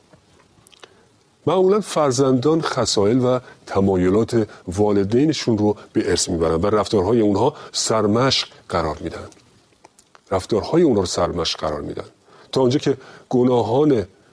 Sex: male